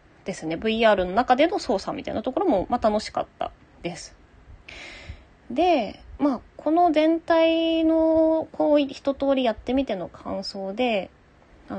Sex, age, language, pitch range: female, 20-39, Japanese, 190-285 Hz